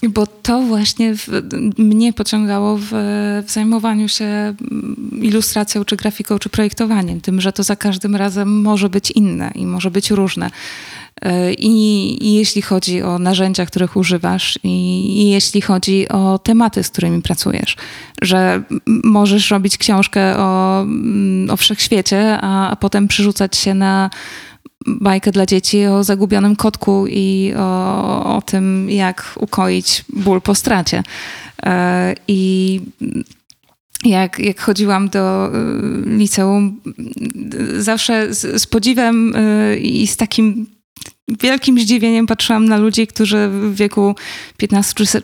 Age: 20-39